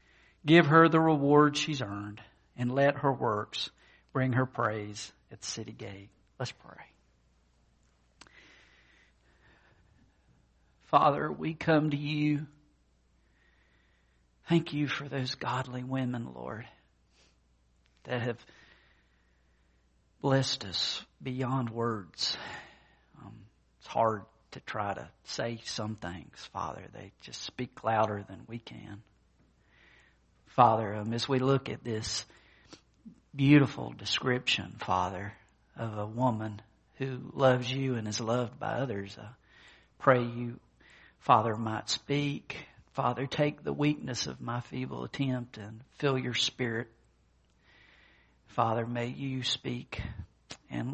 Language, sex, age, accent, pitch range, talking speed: English, male, 50-69, American, 80-130 Hz, 115 wpm